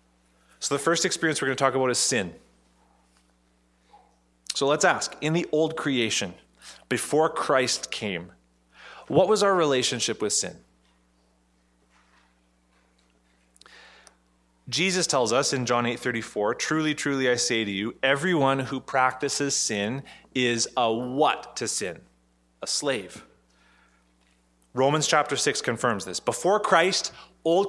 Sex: male